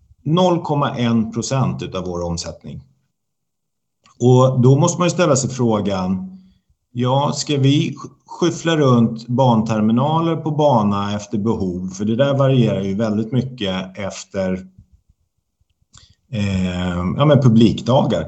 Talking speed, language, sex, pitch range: 110 wpm, Swedish, male, 95-135 Hz